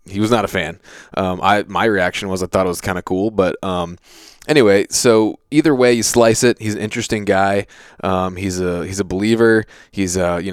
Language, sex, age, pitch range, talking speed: English, male, 20-39, 95-110 Hz, 220 wpm